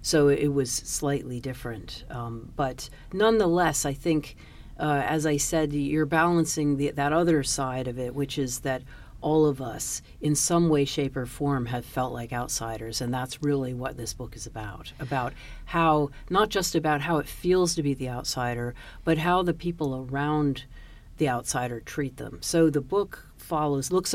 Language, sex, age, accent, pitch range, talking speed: English, female, 50-69, American, 125-150 Hz, 175 wpm